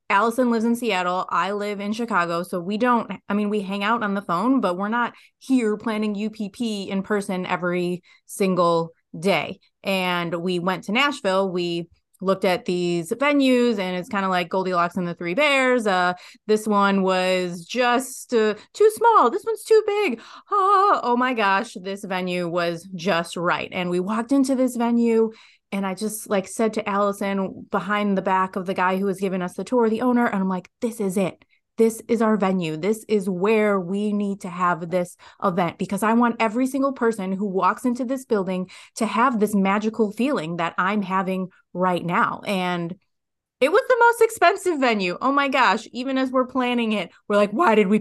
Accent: American